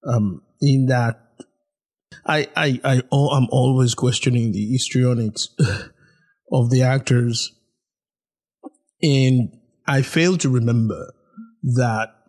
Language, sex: English, male